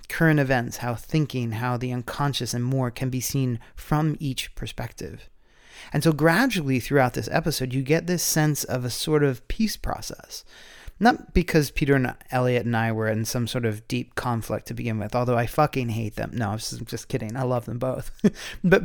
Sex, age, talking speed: male, 30-49, 195 wpm